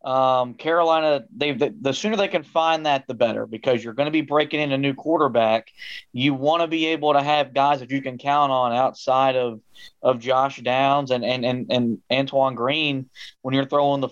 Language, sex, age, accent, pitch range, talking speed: English, male, 20-39, American, 130-155 Hz, 215 wpm